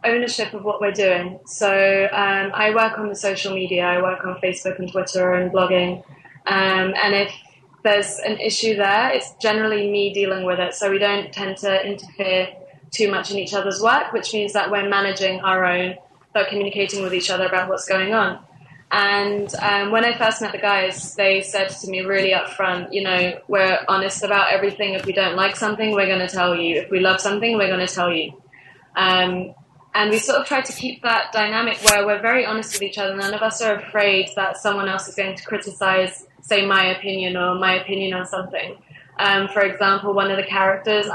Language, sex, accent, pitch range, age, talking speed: Turkish, female, British, 185-205 Hz, 20-39, 210 wpm